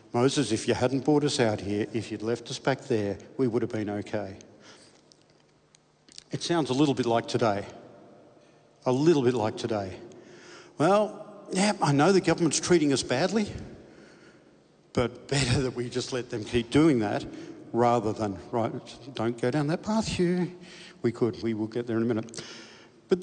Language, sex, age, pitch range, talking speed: English, male, 60-79, 115-140 Hz, 180 wpm